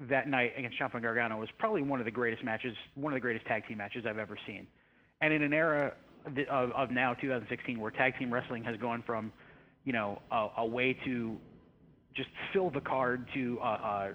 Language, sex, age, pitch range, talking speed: English, male, 30-49, 110-130 Hz, 210 wpm